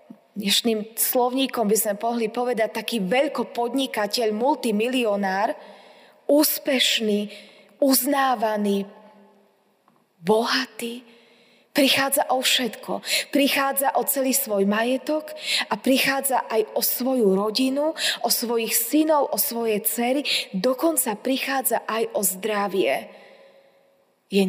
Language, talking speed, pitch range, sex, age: Slovak, 95 wpm, 210-265 Hz, female, 20-39